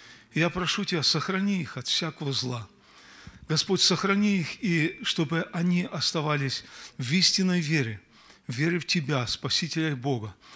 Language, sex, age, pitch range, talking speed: Russian, male, 40-59, 130-165 Hz, 140 wpm